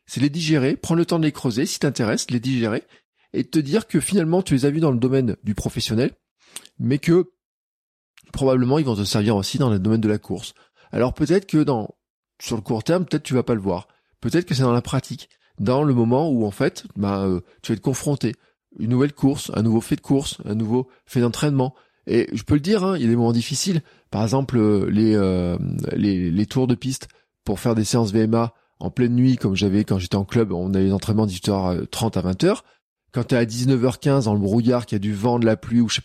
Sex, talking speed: male, 245 wpm